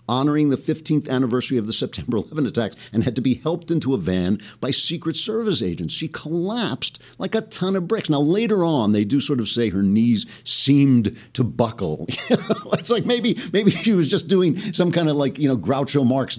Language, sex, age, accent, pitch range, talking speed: English, male, 50-69, American, 110-155 Hz, 210 wpm